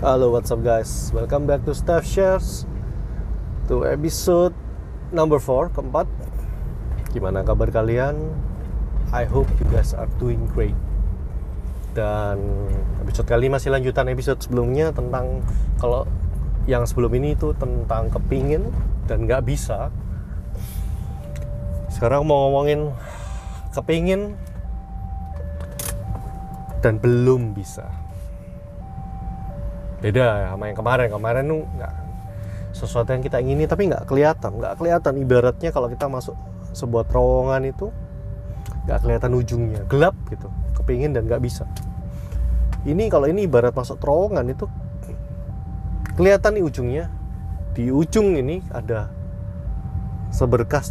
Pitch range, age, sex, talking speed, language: 95-130 Hz, 30-49, male, 115 wpm, Indonesian